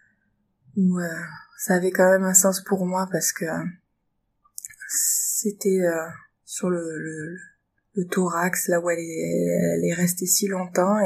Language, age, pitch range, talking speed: French, 20-39, 170-190 Hz, 135 wpm